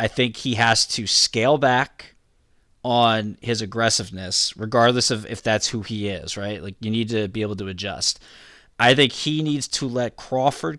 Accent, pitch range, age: American, 105-130 Hz, 20-39